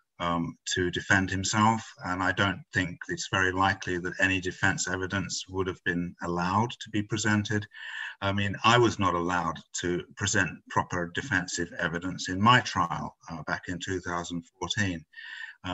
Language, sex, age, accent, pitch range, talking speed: English, male, 50-69, British, 90-105 Hz, 155 wpm